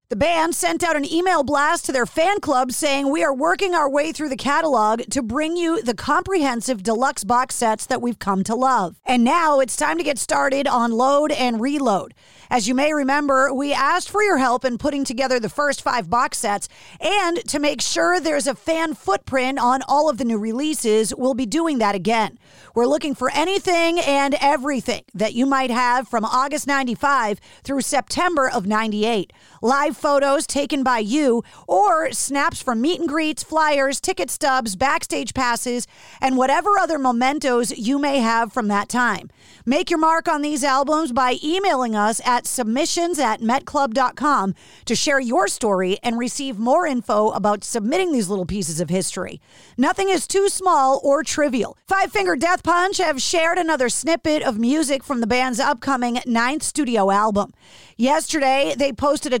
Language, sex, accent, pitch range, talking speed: English, female, American, 245-305 Hz, 180 wpm